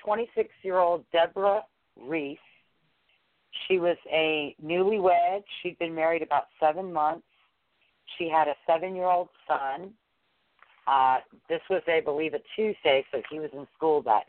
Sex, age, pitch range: female, 50-69, 135-170 Hz